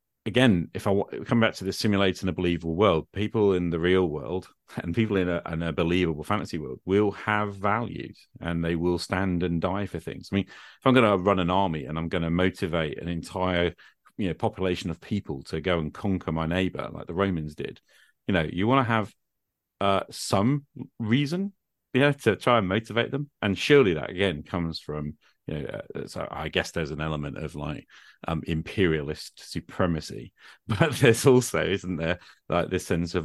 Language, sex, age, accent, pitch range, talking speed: English, male, 40-59, British, 85-100 Hz, 200 wpm